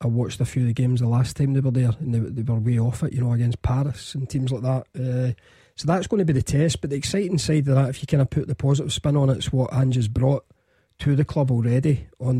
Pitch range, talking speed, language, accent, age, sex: 125-145 Hz, 295 wpm, English, British, 40-59, male